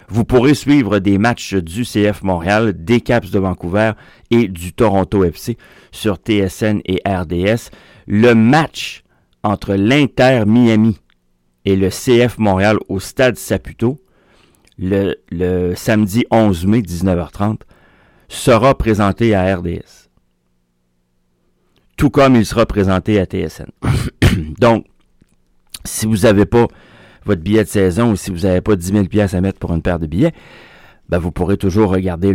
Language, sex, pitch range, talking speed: French, male, 90-110 Hz, 145 wpm